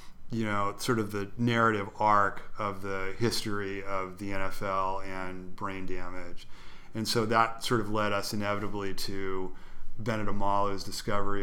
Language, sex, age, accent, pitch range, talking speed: English, male, 40-59, American, 95-105 Hz, 145 wpm